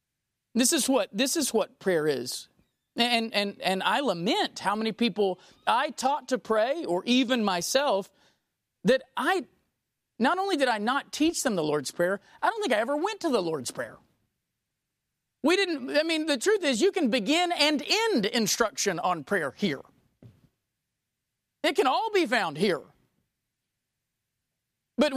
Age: 40-59